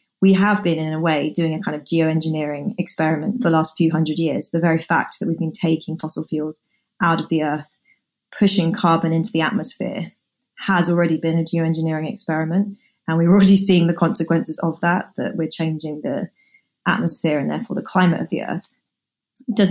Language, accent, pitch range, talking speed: English, British, 165-200 Hz, 190 wpm